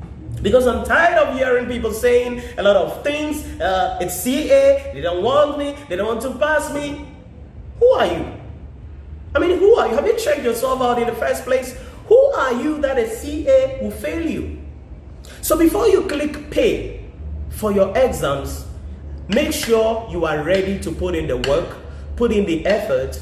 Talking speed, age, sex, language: 185 wpm, 30-49, male, English